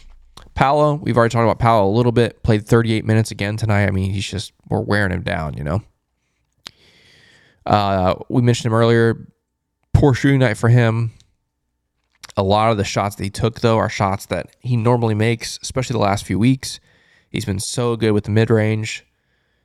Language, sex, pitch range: English, male, 100-120 Hz